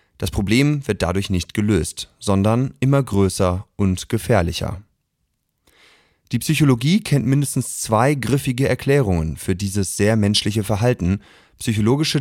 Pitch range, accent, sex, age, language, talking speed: 95-125 Hz, German, male, 30-49, German, 120 wpm